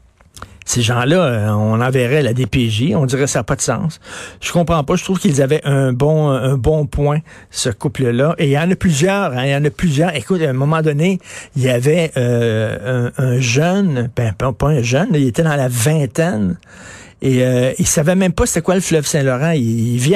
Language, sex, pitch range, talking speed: French, male, 125-160 Hz, 220 wpm